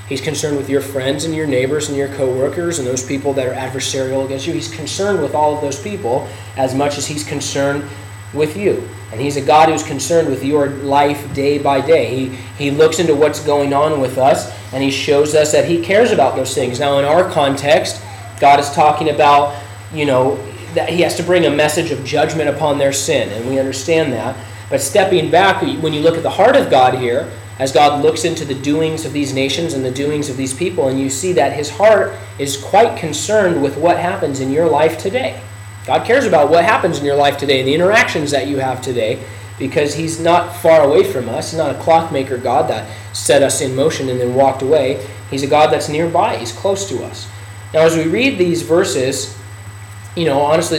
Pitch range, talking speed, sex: 130-155 Hz, 220 wpm, male